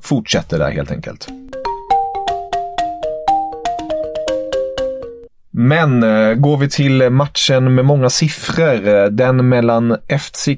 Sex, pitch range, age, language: male, 115-150 Hz, 20-39, English